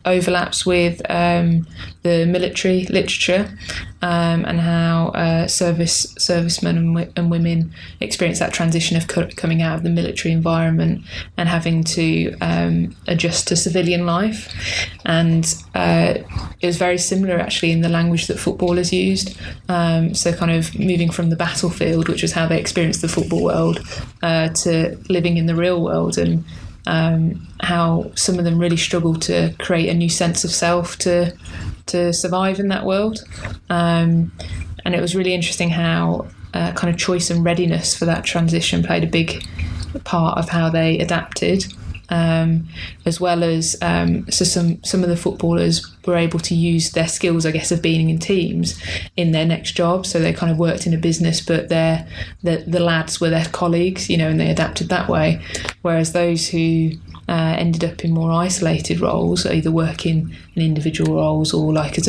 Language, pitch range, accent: English, 160-175 Hz, British